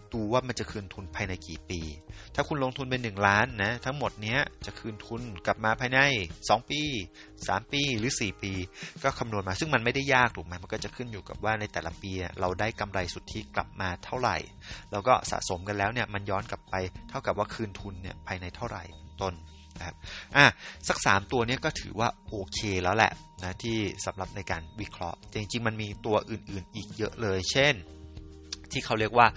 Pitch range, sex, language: 95-115 Hz, male, English